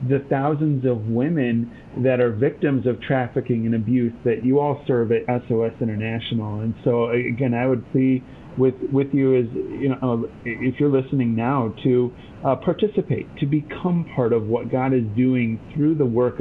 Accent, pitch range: American, 115-140 Hz